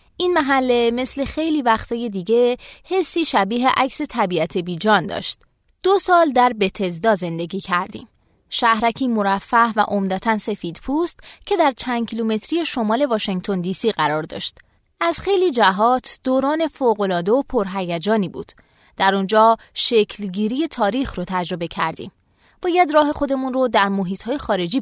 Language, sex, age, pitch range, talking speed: Persian, female, 20-39, 195-260 Hz, 140 wpm